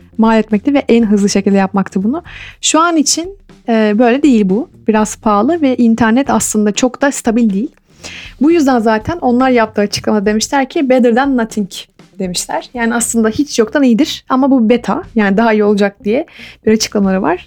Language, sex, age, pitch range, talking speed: Turkish, female, 30-49, 205-275 Hz, 180 wpm